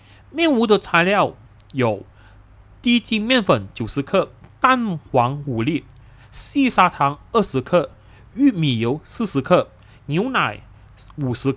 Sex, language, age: male, Chinese, 30-49